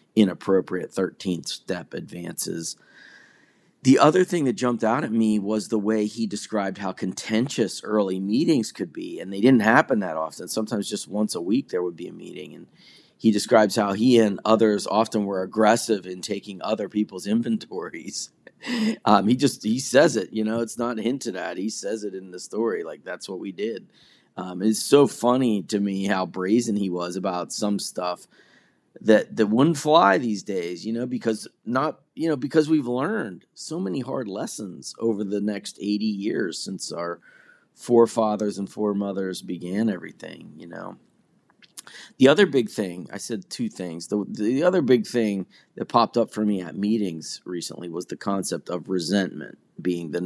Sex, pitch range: male, 95-115 Hz